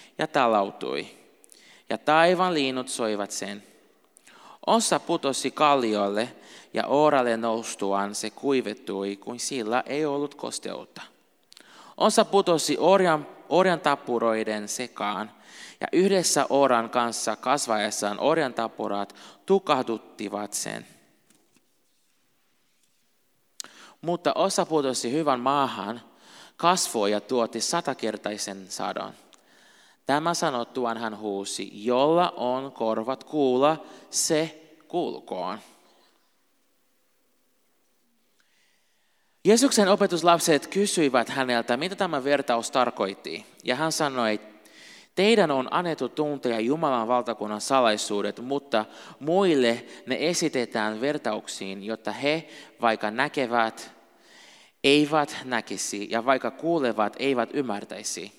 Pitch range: 110-150 Hz